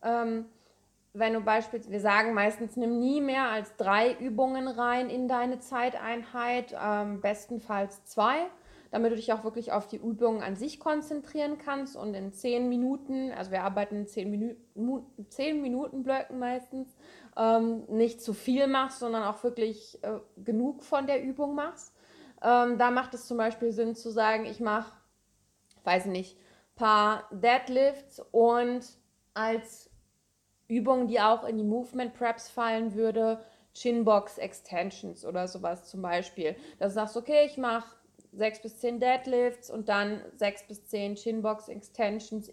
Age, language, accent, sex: 20-39, German, German, female